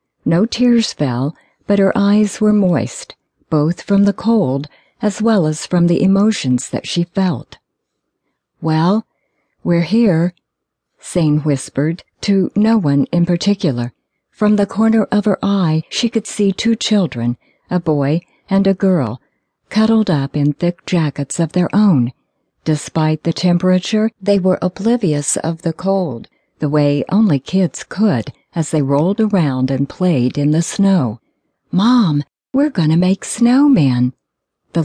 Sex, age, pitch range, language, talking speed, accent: female, 50-69, 150-205 Hz, English, 145 wpm, American